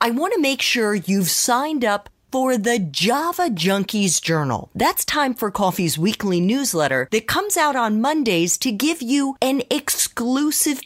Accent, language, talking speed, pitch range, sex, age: American, English, 160 wpm, 170-275 Hz, female, 40-59